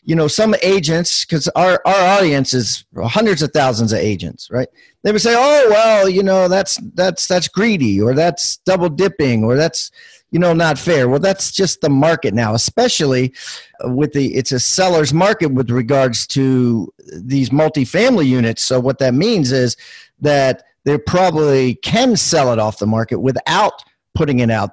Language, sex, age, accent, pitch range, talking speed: English, male, 40-59, American, 125-165 Hz, 175 wpm